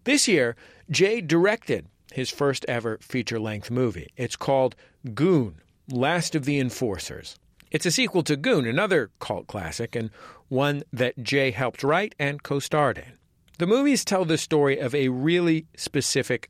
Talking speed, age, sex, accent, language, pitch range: 150 wpm, 50-69, male, American, English, 115-155 Hz